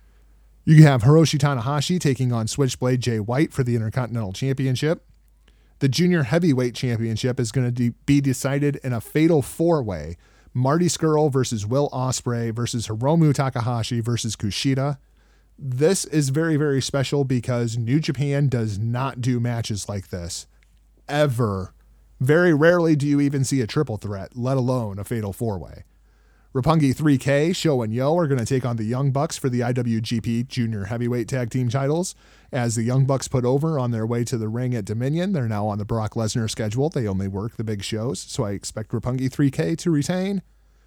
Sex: male